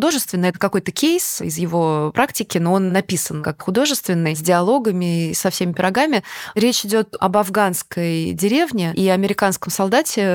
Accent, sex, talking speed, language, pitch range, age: native, female, 155 wpm, Russian, 175-215 Hz, 20-39